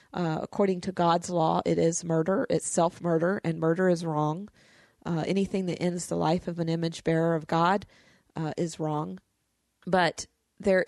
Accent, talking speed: American, 170 wpm